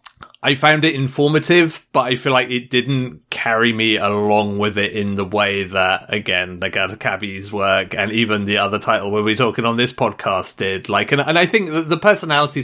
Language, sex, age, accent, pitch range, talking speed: English, male, 30-49, British, 105-135 Hz, 210 wpm